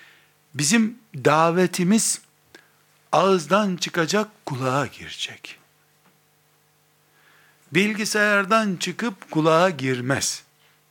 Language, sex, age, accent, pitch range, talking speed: Turkish, male, 60-79, native, 130-180 Hz, 55 wpm